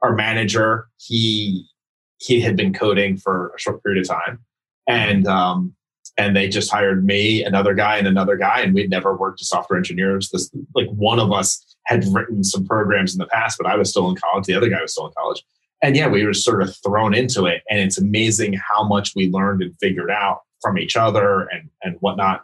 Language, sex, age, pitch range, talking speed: English, male, 30-49, 95-110 Hz, 220 wpm